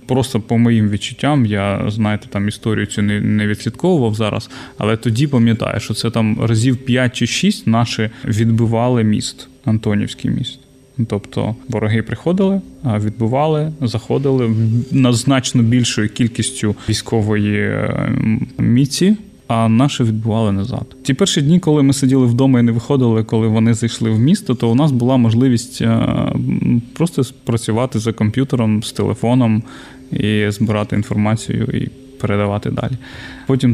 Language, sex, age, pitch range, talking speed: Ukrainian, male, 20-39, 110-130 Hz, 135 wpm